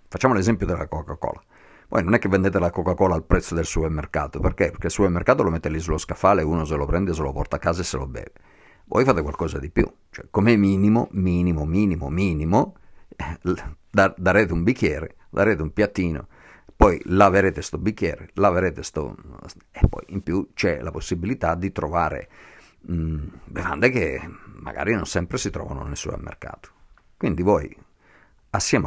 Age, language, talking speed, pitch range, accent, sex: 50-69, Italian, 175 wpm, 80-100 Hz, native, male